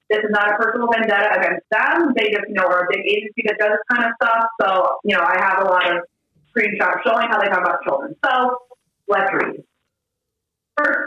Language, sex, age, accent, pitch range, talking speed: English, female, 30-49, American, 230-335 Hz, 215 wpm